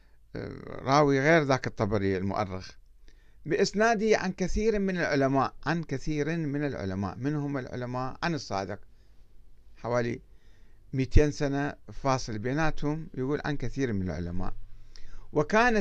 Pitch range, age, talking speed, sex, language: 105-150 Hz, 60-79, 110 wpm, male, Arabic